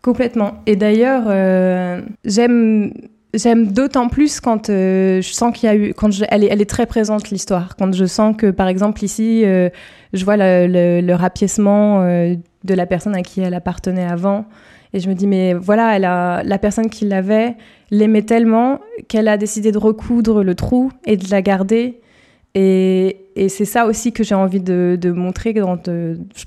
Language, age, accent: French, 20-39, French